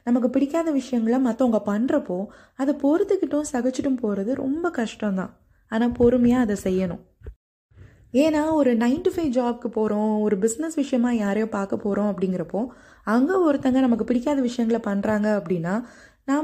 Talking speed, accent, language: 130 wpm, native, Tamil